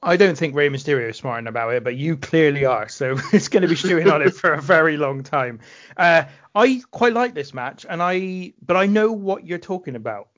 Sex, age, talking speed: male, 30-49, 235 wpm